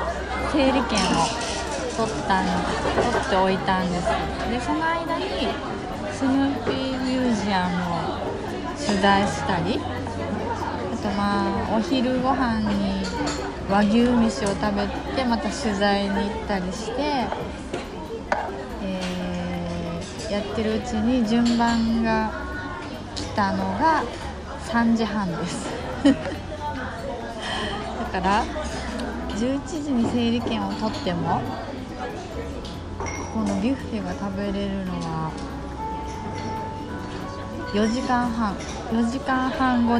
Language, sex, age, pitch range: Japanese, female, 20-39, 195-250 Hz